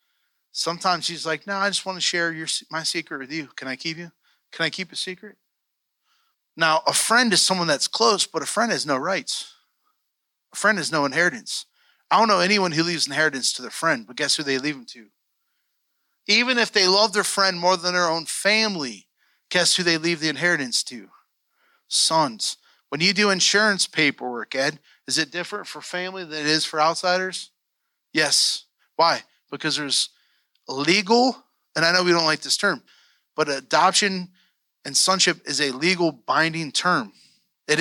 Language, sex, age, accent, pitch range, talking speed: English, male, 30-49, American, 150-185 Hz, 185 wpm